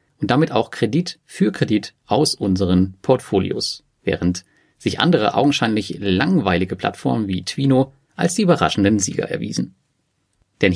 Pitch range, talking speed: 95-130 Hz, 130 wpm